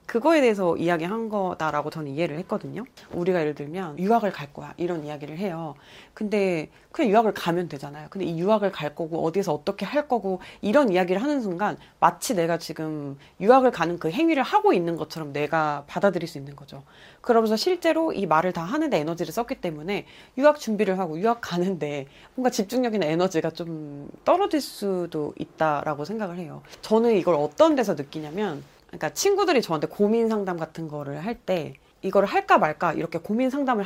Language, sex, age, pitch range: Korean, female, 30-49, 160-240 Hz